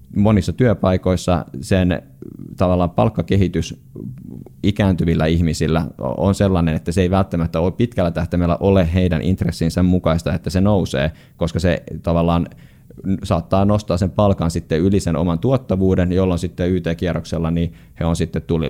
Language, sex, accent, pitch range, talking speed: Finnish, male, native, 85-95 Hz, 135 wpm